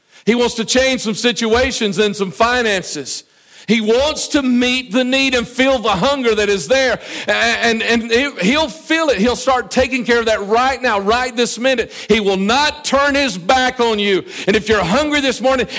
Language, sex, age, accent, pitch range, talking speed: English, male, 50-69, American, 180-250 Hz, 200 wpm